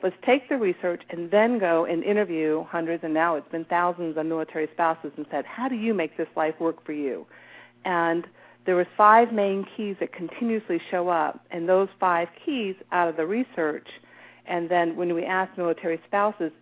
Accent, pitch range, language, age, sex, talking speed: American, 160-190 Hz, English, 50-69, female, 195 wpm